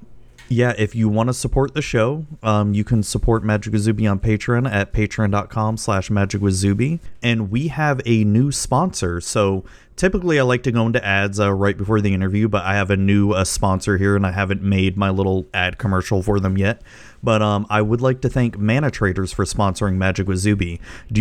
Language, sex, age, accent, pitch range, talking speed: English, male, 30-49, American, 95-120 Hz, 205 wpm